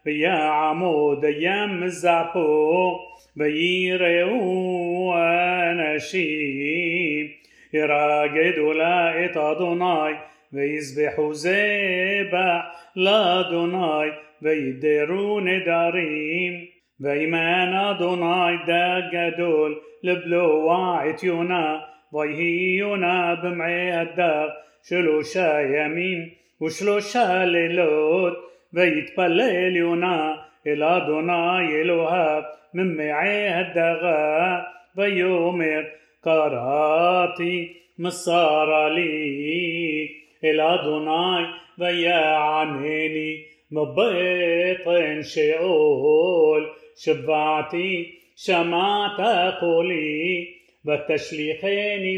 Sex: male